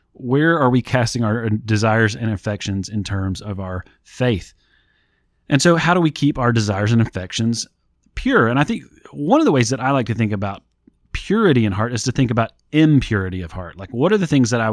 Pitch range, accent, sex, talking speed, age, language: 100-125 Hz, American, male, 220 wpm, 30-49, English